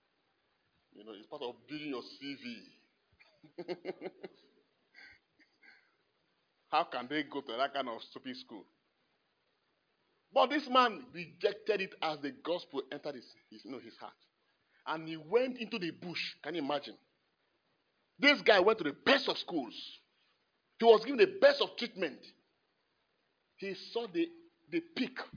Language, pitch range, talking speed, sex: English, 155-255 Hz, 140 wpm, male